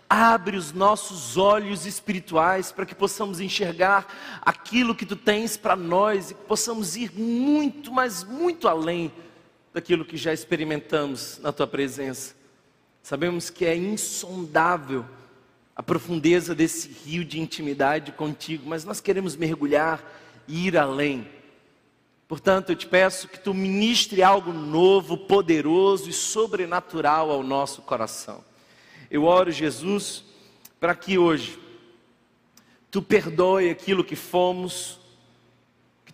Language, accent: Portuguese, Brazilian